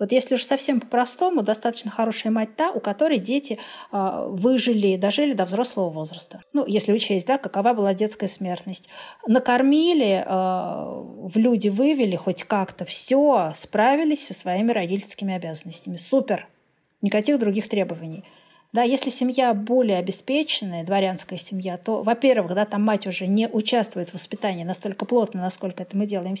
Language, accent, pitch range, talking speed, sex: Russian, native, 195-255 Hz, 150 wpm, female